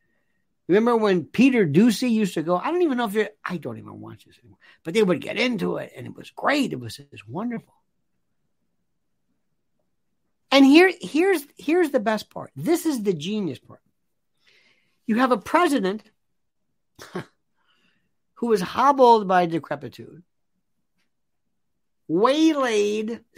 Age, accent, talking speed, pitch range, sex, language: 50-69, American, 145 wpm, 165-265 Hz, male, English